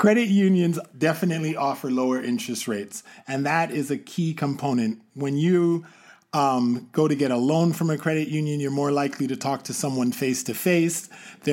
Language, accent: English, American